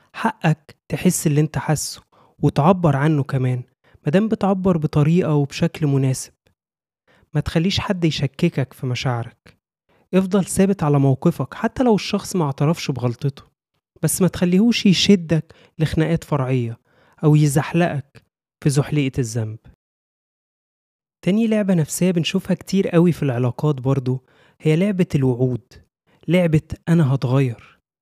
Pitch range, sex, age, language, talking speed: 140-185 Hz, male, 20-39, Arabic, 115 wpm